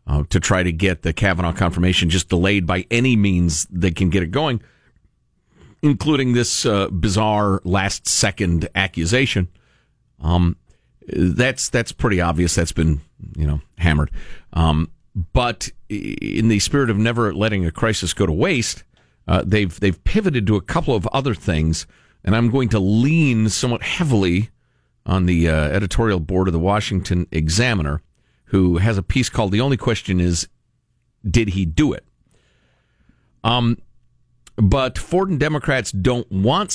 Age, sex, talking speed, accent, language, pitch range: 50-69, male, 150 wpm, American, English, 90-120 Hz